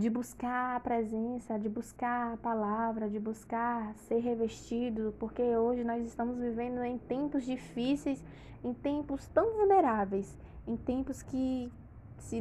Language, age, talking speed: Portuguese, 20-39, 135 wpm